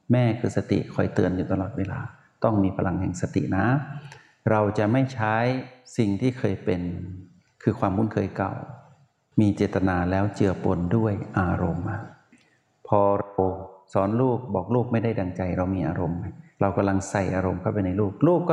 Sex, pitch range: male, 95-120 Hz